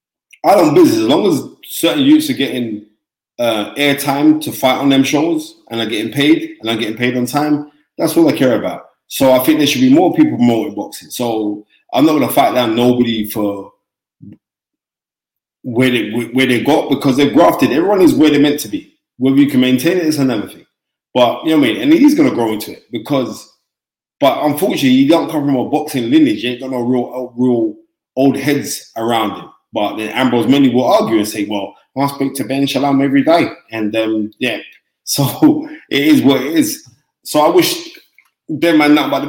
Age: 20-39